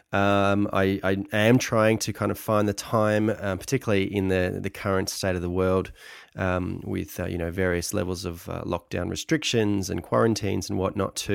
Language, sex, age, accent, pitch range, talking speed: English, male, 20-39, Australian, 95-105 Hz, 195 wpm